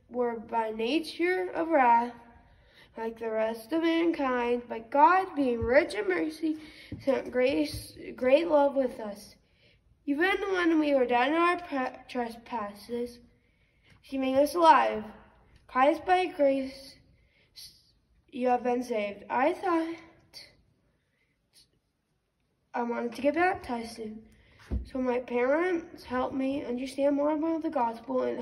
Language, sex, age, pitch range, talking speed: English, female, 10-29, 240-315 Hz, 130 wpm